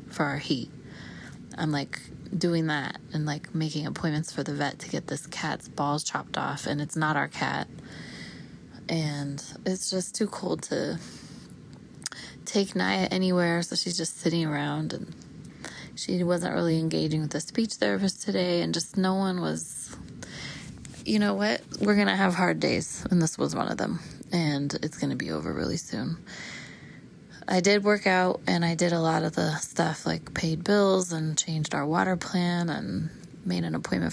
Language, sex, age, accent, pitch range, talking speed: English, female, 20-39, American, 155-185 Hz, 175 wpm